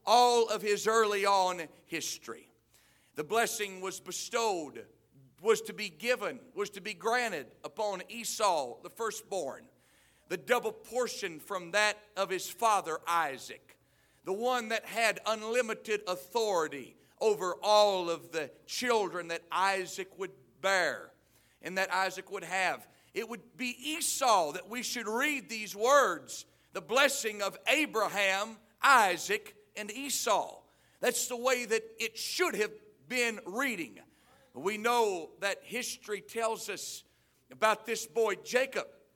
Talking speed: 135 wpm